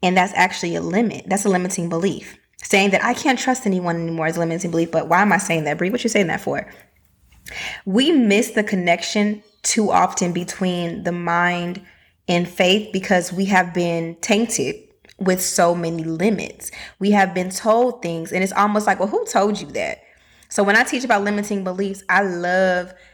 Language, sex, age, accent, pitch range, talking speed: English, female, 20-39, American, 170-205 Hz, 195 wpm